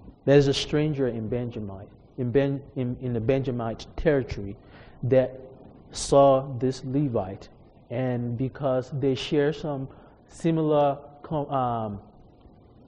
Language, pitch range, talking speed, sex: English, 110-140 Hz, 105 wpm, male